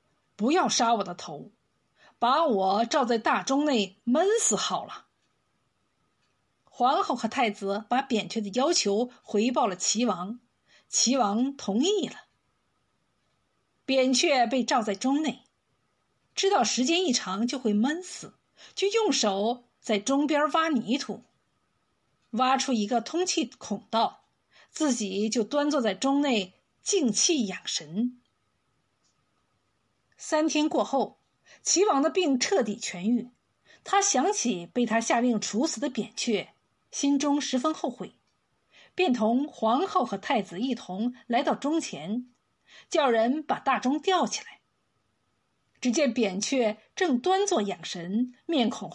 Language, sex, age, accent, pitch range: Chinese, female, 50-69, native, 220-295 Hz